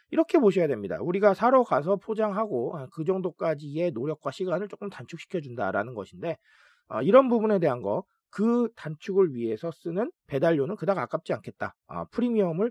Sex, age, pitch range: male, 40-59, 165-230 Hz